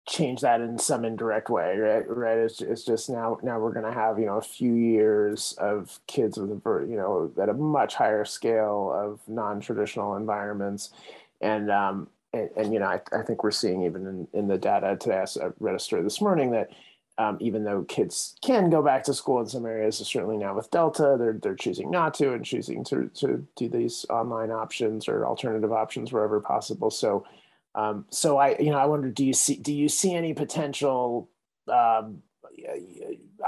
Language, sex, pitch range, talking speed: English, male, 105-125 Hz, 195 wpm